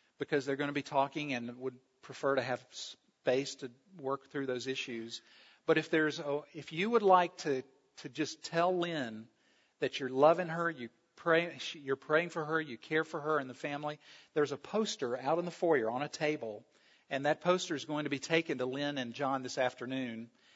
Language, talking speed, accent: English, 205 wpm, American